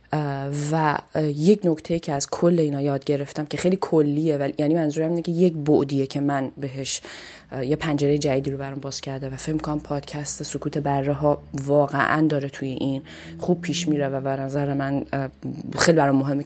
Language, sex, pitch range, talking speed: Persian, female, 140-160 Hz, 180 wpm